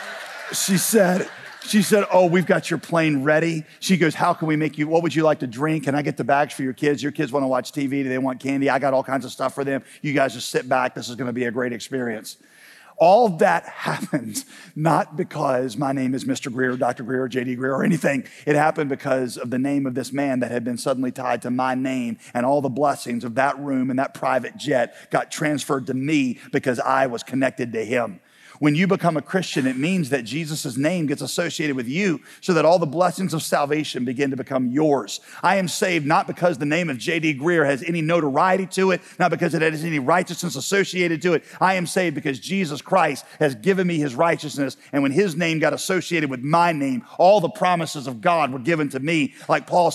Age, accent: 40-59, American